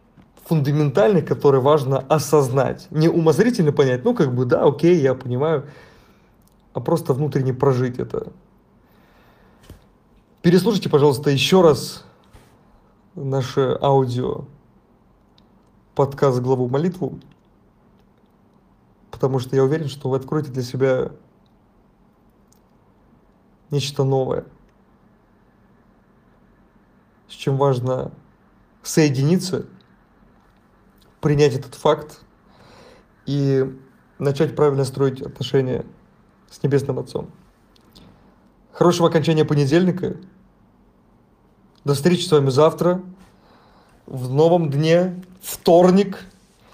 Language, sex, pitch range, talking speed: Russian, male, 135-165 Hz, 85 wpm